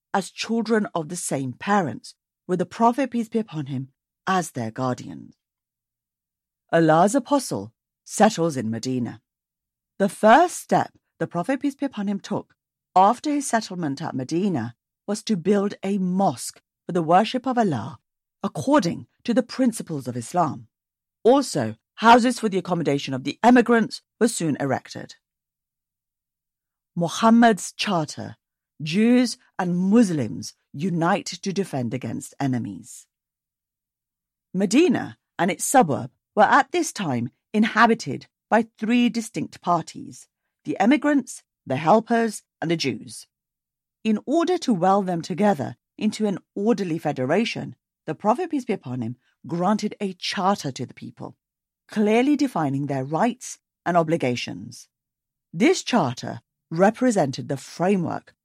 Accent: British